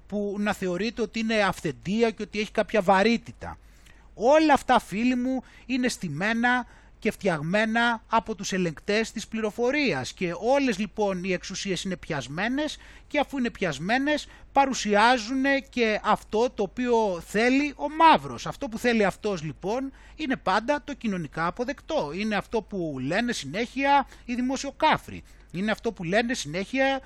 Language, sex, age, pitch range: Greek, male, 30-49, 185-250 Hz